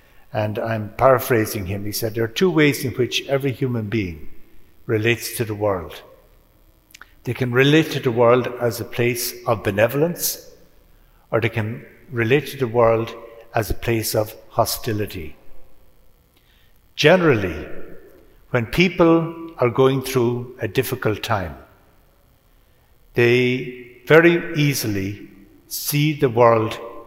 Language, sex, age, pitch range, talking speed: English, male, 60-79, 115-135 Hz, 125 wpm